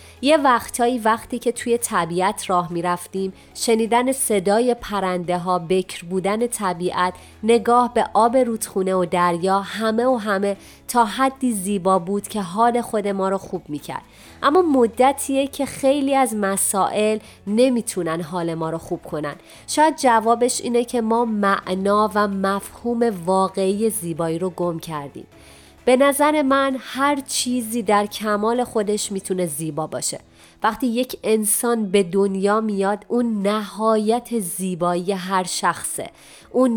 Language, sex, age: Persian, female, 30-49